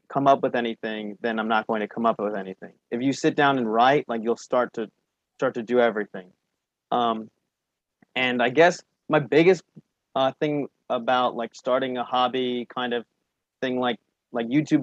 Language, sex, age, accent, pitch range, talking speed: English, male, 20-39, American, 120-140 Hz, 185 wpm